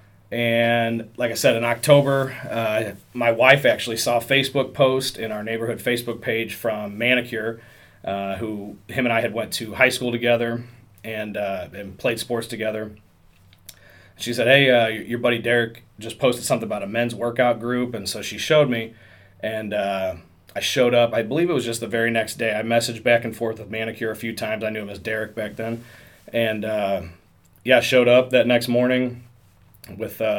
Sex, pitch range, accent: male, 110-125 Hz, American